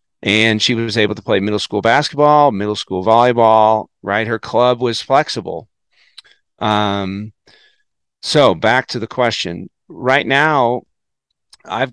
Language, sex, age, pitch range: English, male, 40-59, 105-130 Hz